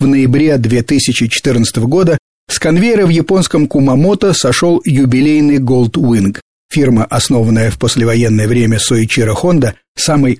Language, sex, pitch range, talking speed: Russian, male, 120-155 Hz, 120 wpm